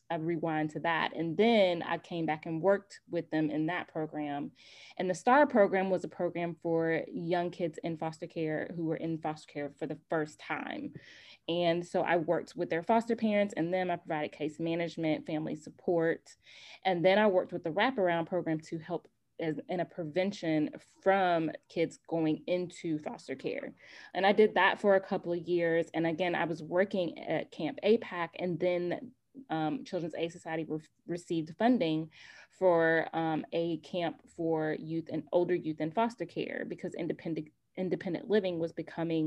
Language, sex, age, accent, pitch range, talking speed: English, female, 20-39, American, 160-180 Hz, 175 wpm